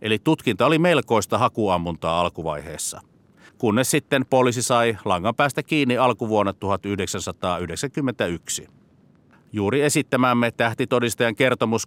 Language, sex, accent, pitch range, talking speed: Finnish, male, native, 100-130 Hz, 95 wpm